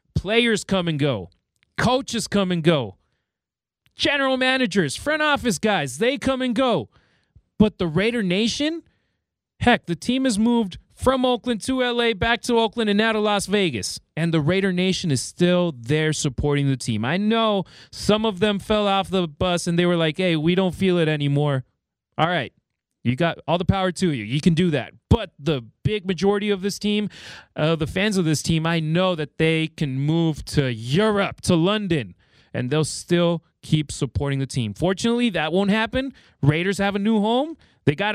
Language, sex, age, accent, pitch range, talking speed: English, male, 30-49, American, 150-215 Hz, 190 wpm